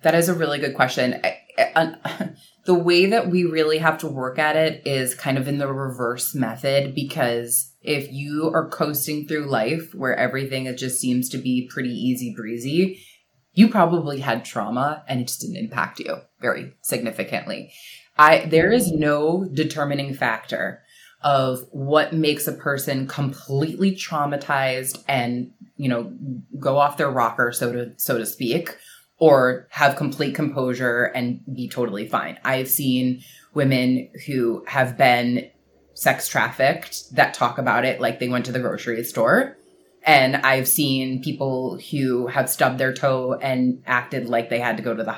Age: 20-39